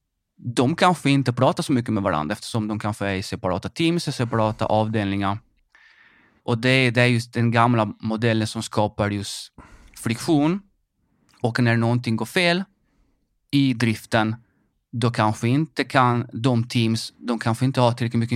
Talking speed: 165 wpm